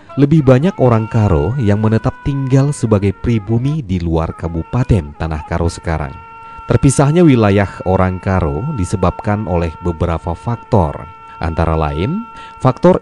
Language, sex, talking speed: Indonesian, male, 120 wpm